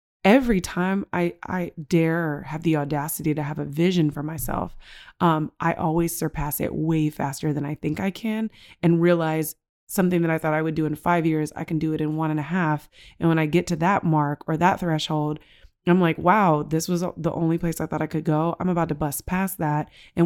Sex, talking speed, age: female, 230 wpm, 20-39